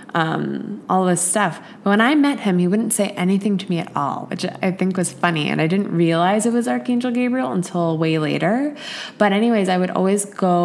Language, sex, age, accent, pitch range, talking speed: English, female, 20-39, American, 165-200 Hz, 220 wpm